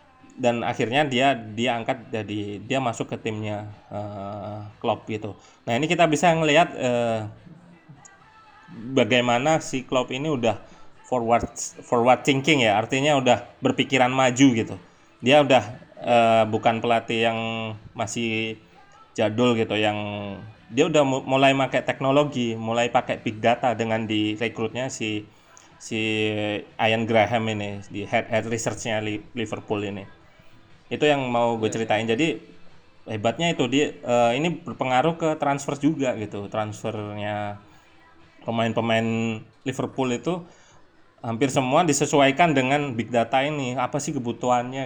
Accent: native